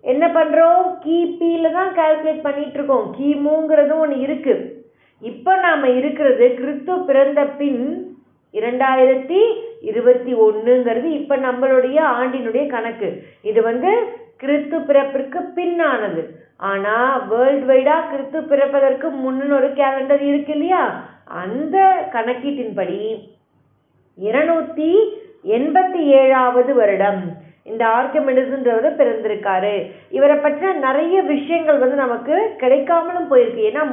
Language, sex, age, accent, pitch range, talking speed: Tamil, female, 30-49, native, 235-320 Hz, 85 wpm